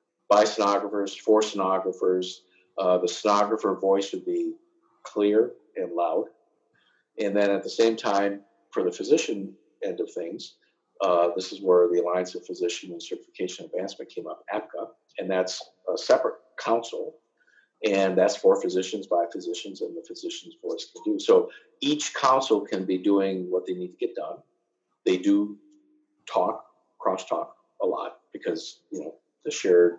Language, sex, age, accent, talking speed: English, male, 50-69, American, 160 wpm